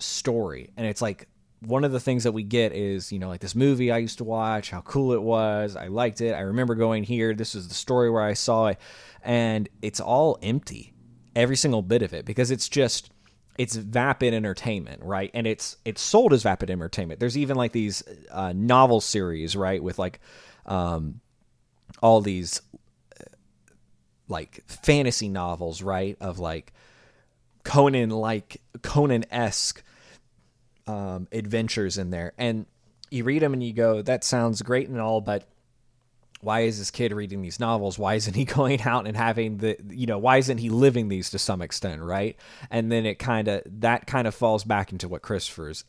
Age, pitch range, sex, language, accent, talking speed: 30-49, 95-120 Hz, male, English, American, 185 wpm